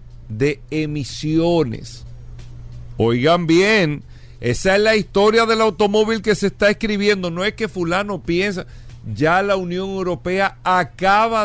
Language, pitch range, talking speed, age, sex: Spanish, 120-190 Hz, 125 wpm, 50-69, male